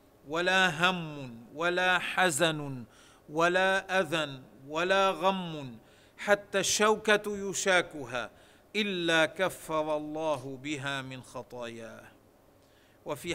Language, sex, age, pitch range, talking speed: Arabic, male, 40-59, 155-185 Hz, 80 wpm